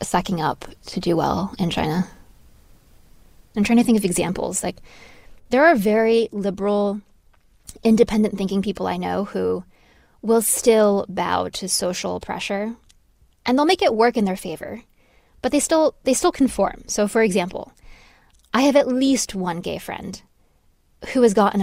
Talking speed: 160 wpm